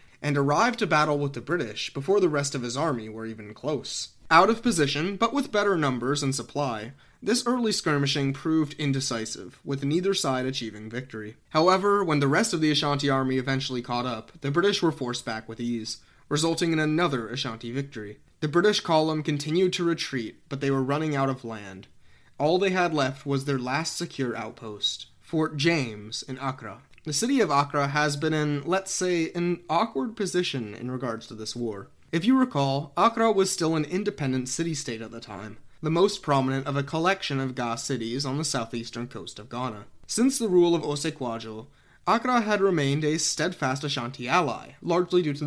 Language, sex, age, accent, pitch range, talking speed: English, male, 20-39, American, 125-175 Hz, 190 wpm